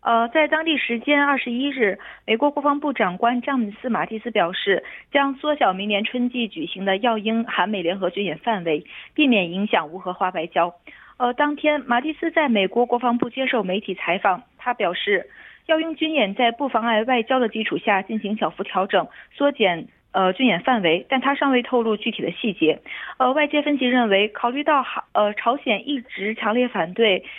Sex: female